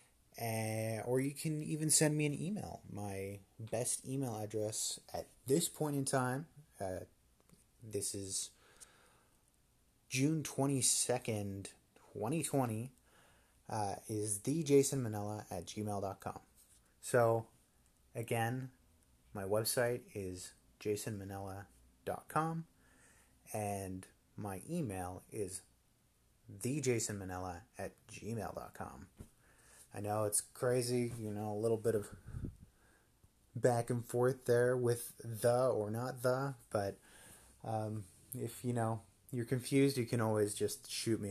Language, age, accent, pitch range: English, 30-49, American, 100-125 Hz